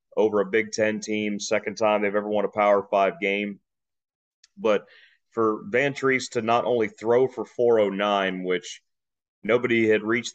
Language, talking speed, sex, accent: English, 155 wpm, male, American